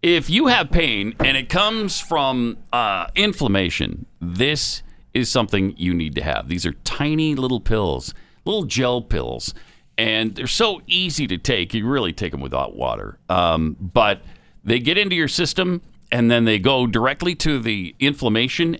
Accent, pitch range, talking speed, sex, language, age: American, 100-155 Hz, 165 wpm, male, English, 50-69